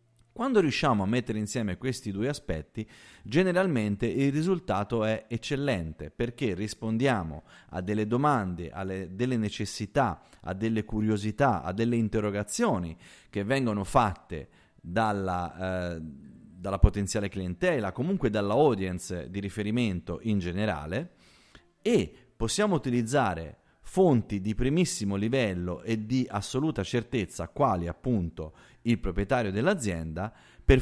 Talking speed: 115 wpm